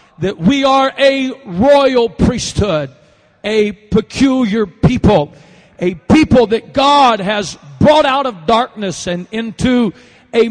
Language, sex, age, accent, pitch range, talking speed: English, male, 50-69, American, 195-270 Hz, 120 wpm